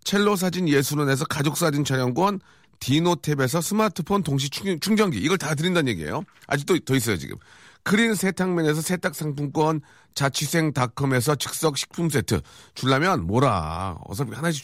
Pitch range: 125-185 Hz